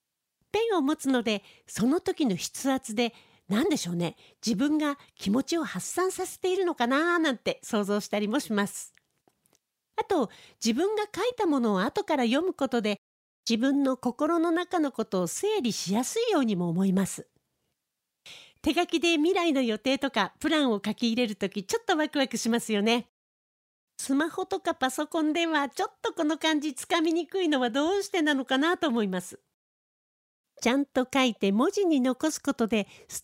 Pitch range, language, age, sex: 225-330 Hz, Japanese, 40-59, female